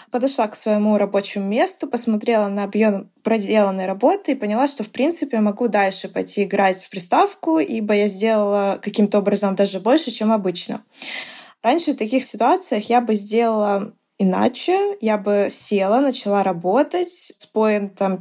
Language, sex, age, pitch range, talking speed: Russian, female, 20-39, 200-255 Hz, 150 wpm